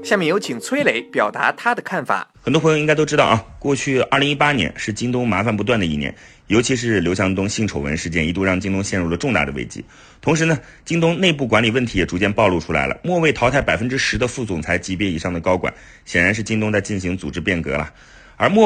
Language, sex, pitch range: Chinese, male, 90-140 Hz